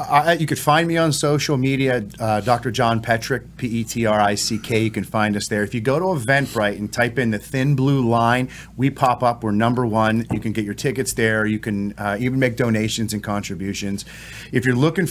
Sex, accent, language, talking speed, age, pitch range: male, American, English, 205 wpm, 40-59, 105-130 Hz